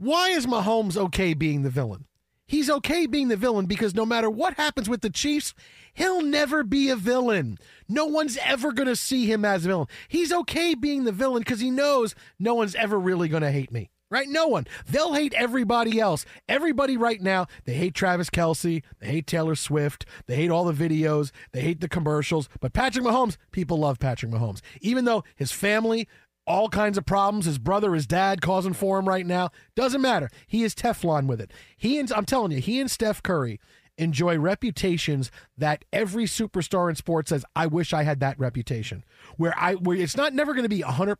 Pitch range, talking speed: 160-230 Hz, 205 wpm